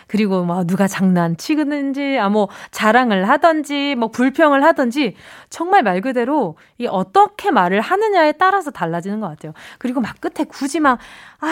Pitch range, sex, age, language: 210-340 Hz, female, 20-39, Korean